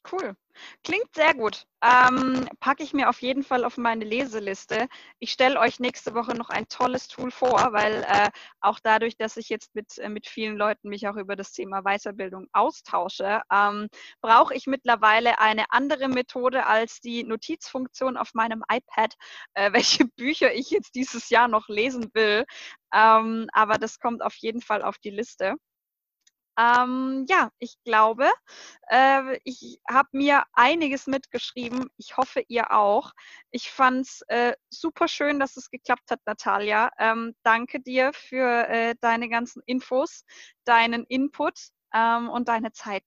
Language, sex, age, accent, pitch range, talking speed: German, female, 20-39, German, 220-260 Hz, 160 wpm